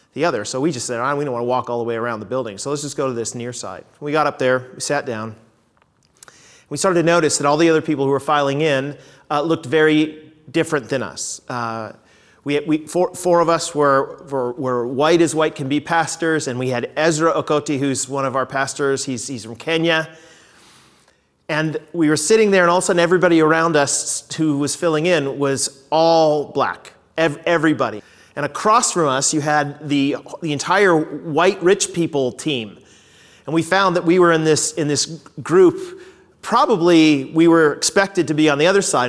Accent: American